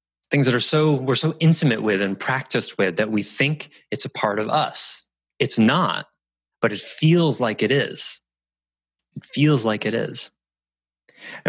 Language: English